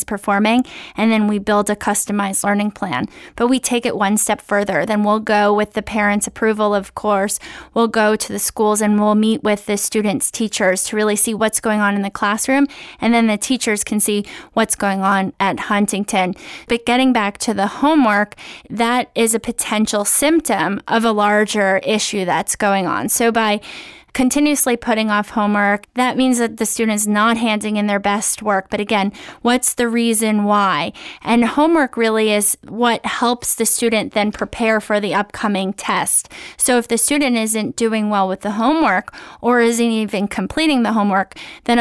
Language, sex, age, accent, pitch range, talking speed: English, female, 20-39, American, 205-235 Hz, 185 wpm